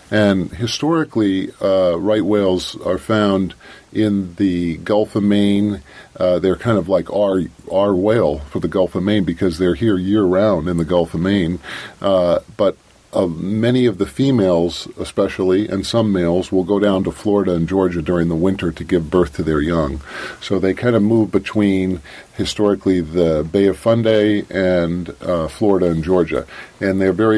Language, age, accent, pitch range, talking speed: English, 50-69, American, 85-100 Hz, 175 wpm